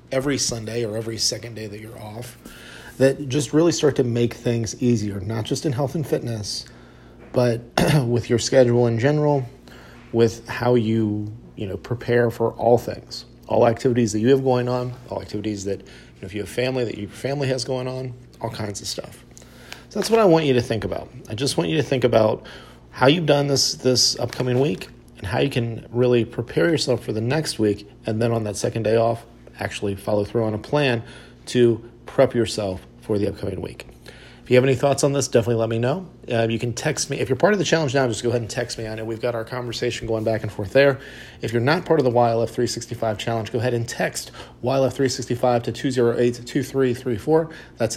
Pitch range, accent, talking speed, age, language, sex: 110-130 Hz, American, 220 wpm, 40-59, English, male